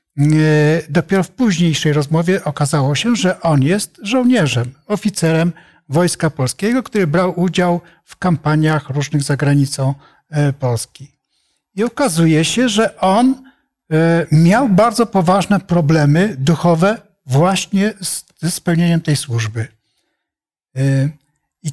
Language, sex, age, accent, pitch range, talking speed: Polish, male, 60-79, native, 150-195 Hz, 105 wpm